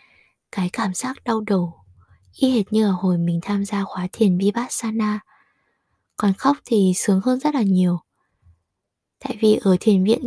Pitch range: 185-240 Hz